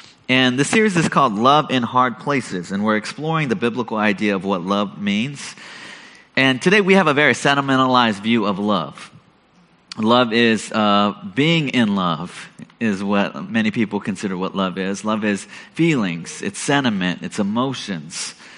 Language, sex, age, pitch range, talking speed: English, male, 30-49, 105-140 Hz, 160 wpm